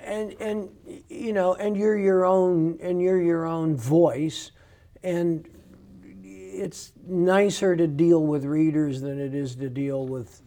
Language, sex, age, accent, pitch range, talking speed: English, male, 60-79, American, 120-155 Hz, 150 wpm